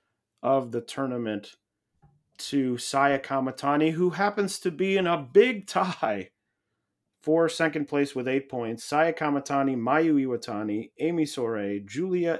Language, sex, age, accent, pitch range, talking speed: English, male, 30-49, American, 125-165 Hz, 130 wpm